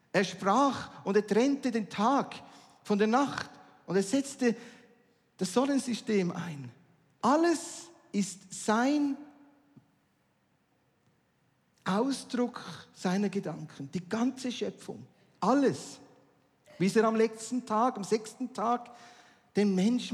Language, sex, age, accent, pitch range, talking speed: German, male, 50-69, Austrian, 190-255 Hz, 105 wpm